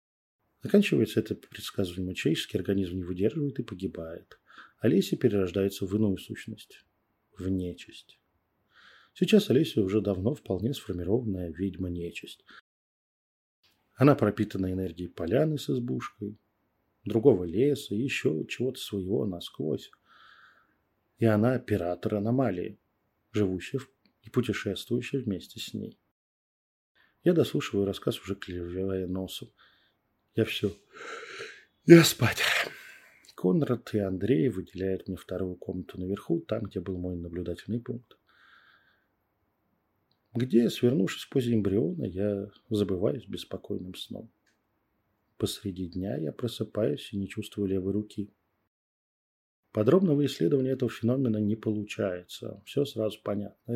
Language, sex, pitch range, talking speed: Russian, male, 95-120 Hz, 110 wpm